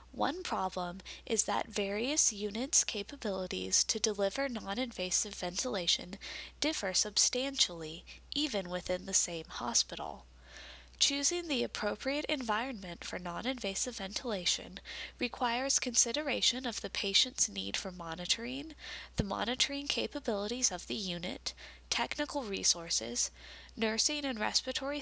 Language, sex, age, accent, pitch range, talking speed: English, female, 10-29, American, 185-260 Hz, 105 wpm